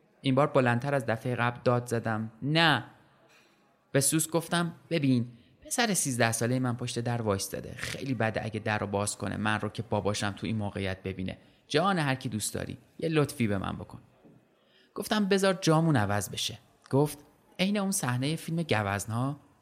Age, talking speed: 30-49, 175 wpm